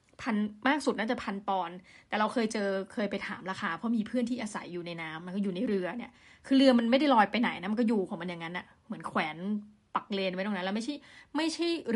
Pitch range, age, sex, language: 200-250 Hz, 20-39, female, Thai